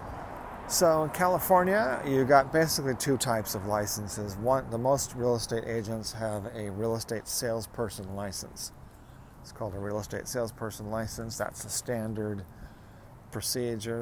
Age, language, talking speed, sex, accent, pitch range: 40-59, English, 140 wpm, male, American, 105-125 Hz